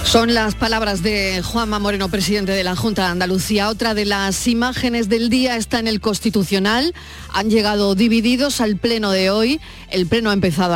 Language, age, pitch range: Spanish, 40-59, 180-220 Hz